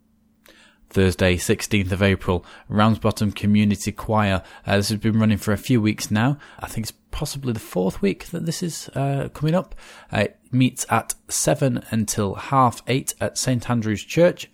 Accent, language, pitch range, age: British, English, 100-125 Hz, 20-39